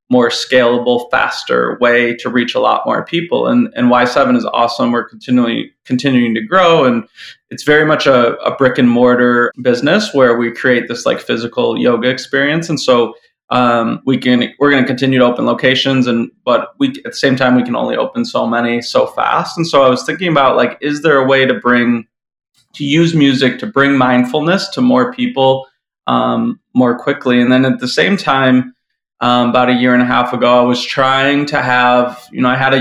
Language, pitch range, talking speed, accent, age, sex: English, 125-145 Hz, 205 wpm, American, 20-39, male